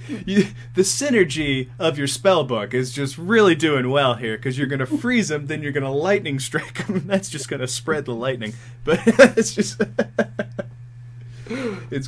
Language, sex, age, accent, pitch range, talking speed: English, male, 20-39, American, 115-135 Hz, 175 wpm